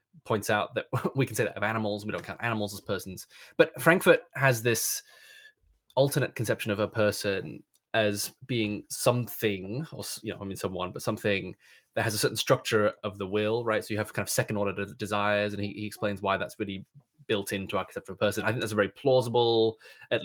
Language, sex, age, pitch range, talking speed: English, male, 20-39, 105-145 Hz, 215 wpm